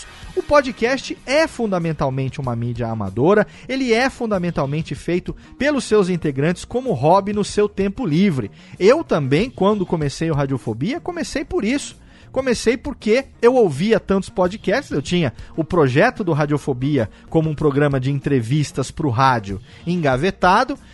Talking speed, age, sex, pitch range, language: 145 wpm, 40-59, male, 150-230 Hz, Portuguese